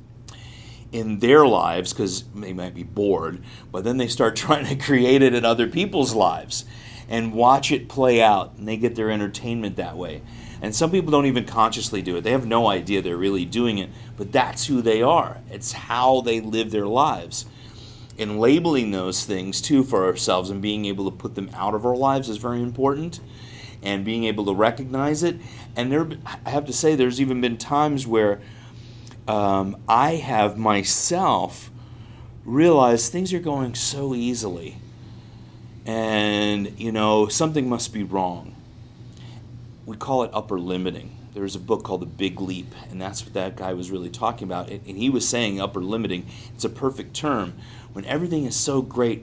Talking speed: 180 wpm